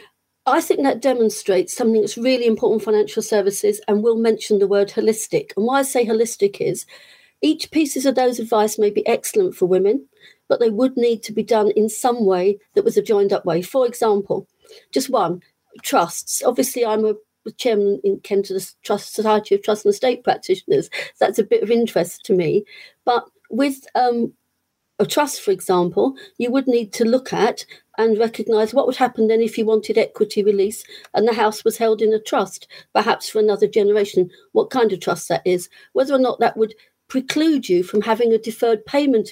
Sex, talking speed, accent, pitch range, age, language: female, 200 wpm, British, 215-275 Hz, 40-59, English